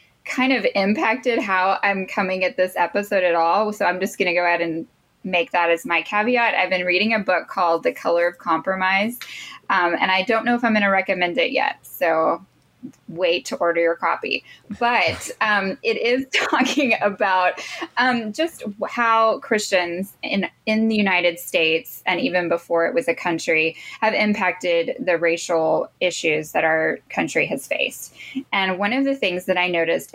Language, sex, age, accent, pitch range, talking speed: English, female, 10-29, American, 175-230 Hz, 185 wpm